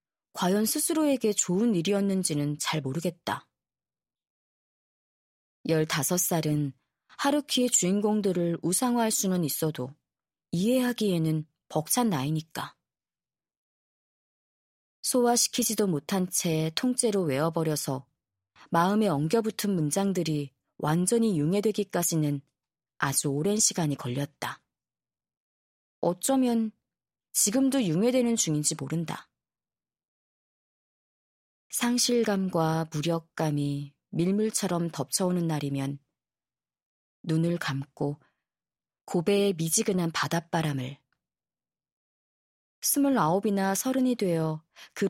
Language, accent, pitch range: Korean, native, 145-200 Hz